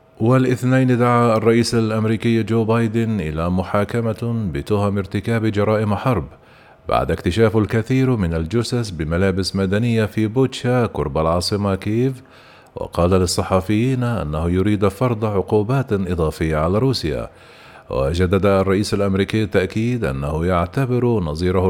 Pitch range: 95-115 Hz